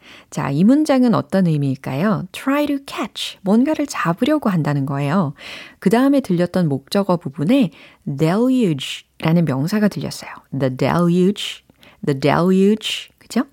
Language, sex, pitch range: Korean, female, 155-235 Hz